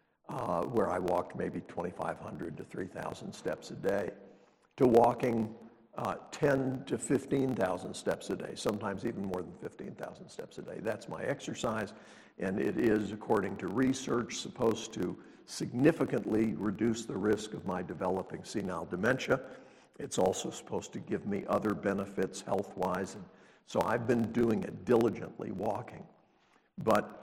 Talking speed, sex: 145 wpm, male